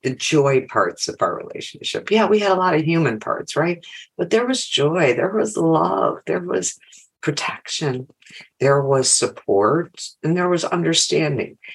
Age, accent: 50-69, American